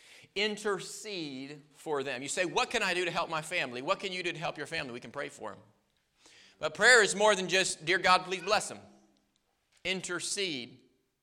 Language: English